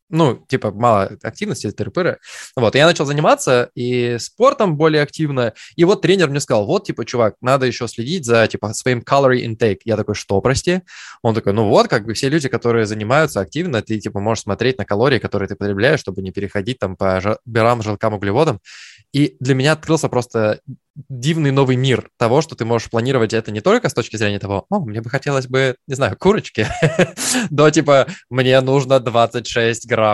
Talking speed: 195 wpm